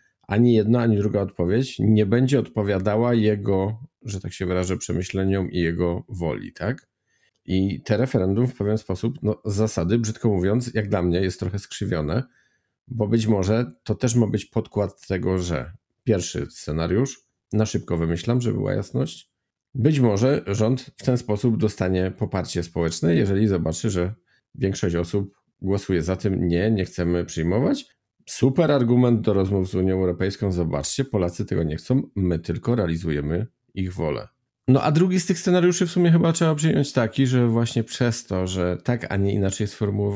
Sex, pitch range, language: male, 95-125 Hz, Polish